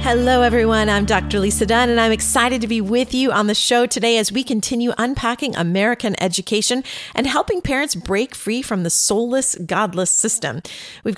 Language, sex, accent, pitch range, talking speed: English, female, American, 175-245 Hz, 185 wpm